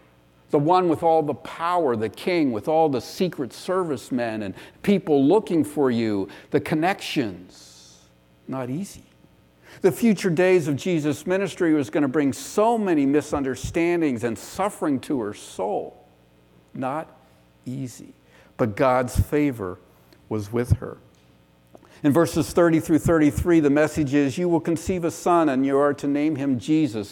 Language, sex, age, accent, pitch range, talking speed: English, male, 50-69, American, 115-165 Hz, 155 wpm